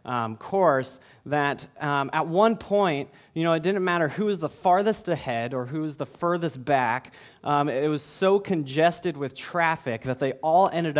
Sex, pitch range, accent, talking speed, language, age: male, 125-160 Hz, American, 185 wpm, English, 30-49